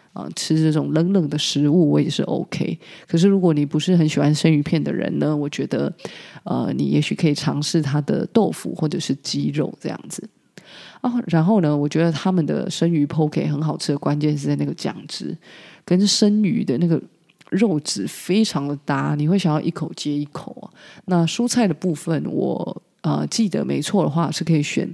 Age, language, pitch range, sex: 20-39, Chinese, 150-180 Hz, female